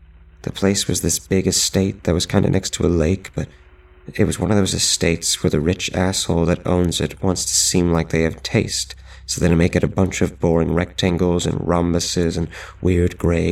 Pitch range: 85-95 Hz